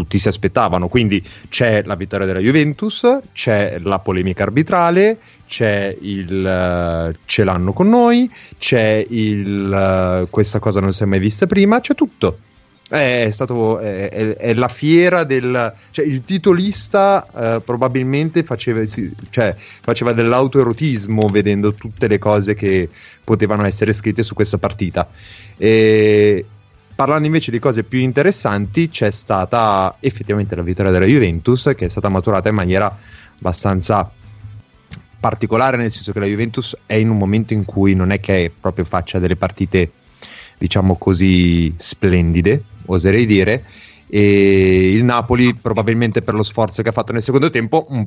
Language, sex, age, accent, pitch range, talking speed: Italian, male, 30-49, native, 95-120 Hz, 155 wpm